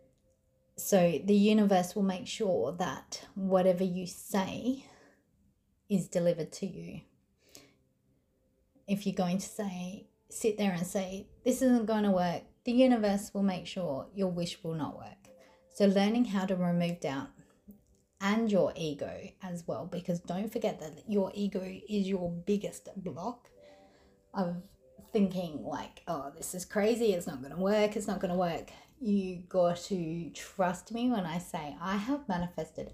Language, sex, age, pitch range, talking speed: English, female, 30-49, 175-210 Hz, 160 wpm